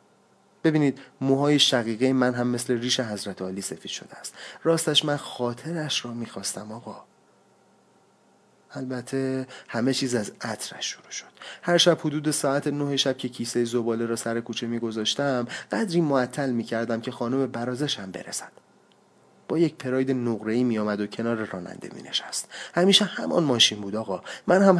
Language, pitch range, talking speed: Persian, 115-150 Hz, 150 wpm